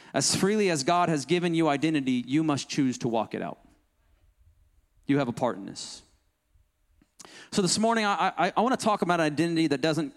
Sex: male